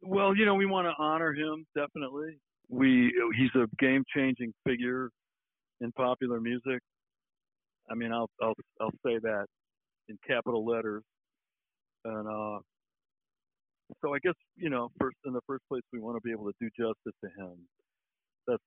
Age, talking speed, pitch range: 60-79, 165 wpm, 105-130 Hz